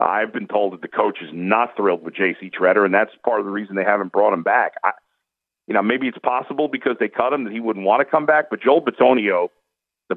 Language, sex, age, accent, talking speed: English, male, 50-69, American, 255 wpm